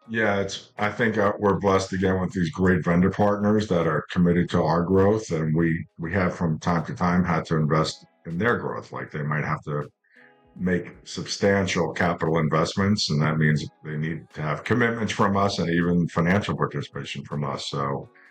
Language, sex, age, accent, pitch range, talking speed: English, male, 50-69, American, 80-100 Hz, 190 wpm